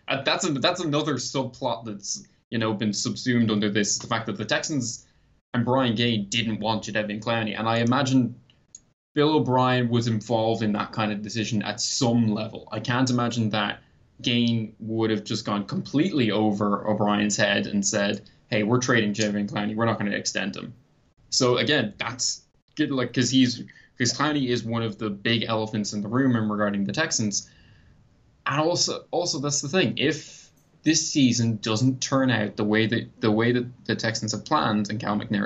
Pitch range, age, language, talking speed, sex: 105-125 Hz, 10-29, English, 190 wpm, male